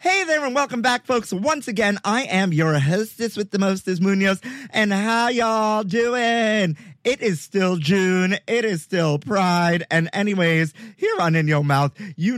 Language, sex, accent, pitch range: English, male, American, 125-190 Hz